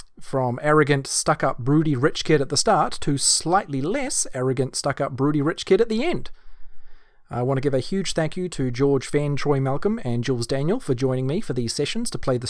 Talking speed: 215 wpm